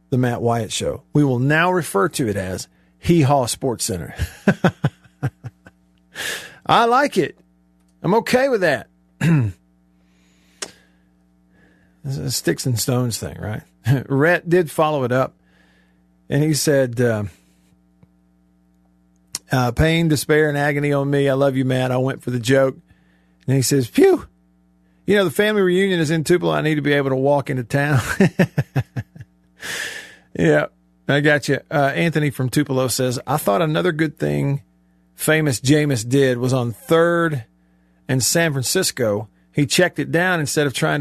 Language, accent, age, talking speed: English, American, 50-69, 150 wpm